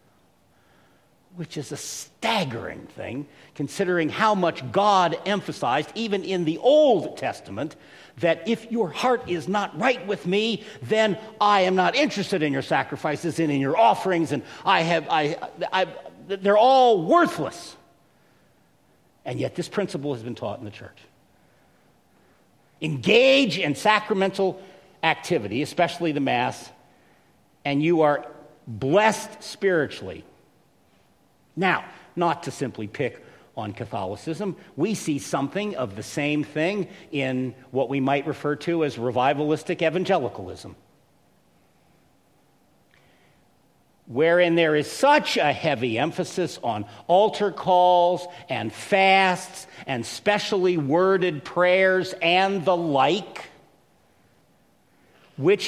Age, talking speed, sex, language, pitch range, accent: 50-69, 120 wpm, male, English, 145-195 Hz, American